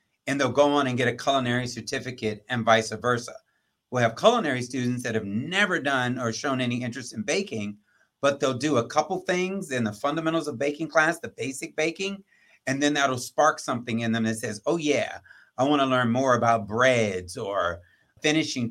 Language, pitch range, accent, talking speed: English, 115-150 Hz, American, 195 wpm